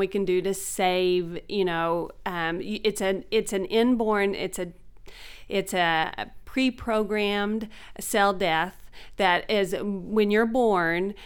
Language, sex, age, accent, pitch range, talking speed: English, female, 40-59, American, 185-220 Hz, 135 wpm